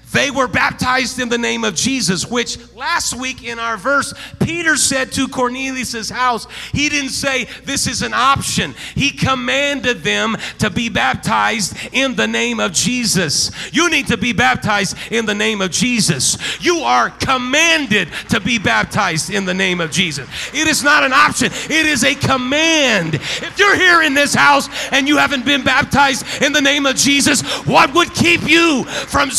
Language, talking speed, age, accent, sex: English, 180 wpm, 40-59, American, male